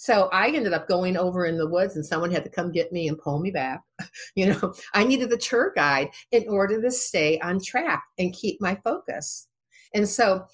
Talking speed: 220 wpm